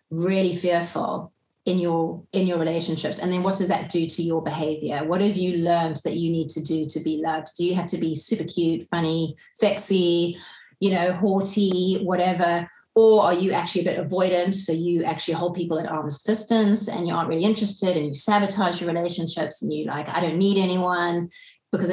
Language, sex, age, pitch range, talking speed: English, female, 30-49, 165-200 Hz, 200 wpm